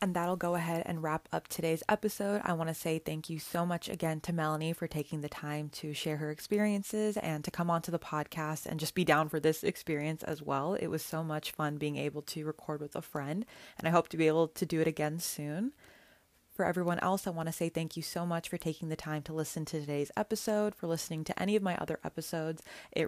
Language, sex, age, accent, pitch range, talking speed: English, female, 20-39, American, 155-180 Hz, 245 wpm